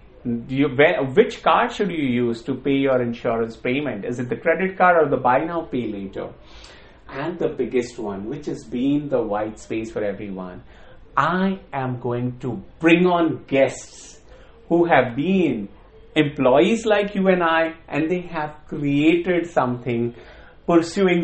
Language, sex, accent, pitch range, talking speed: English, male, Indian, 120-165 Hz, 155 wpm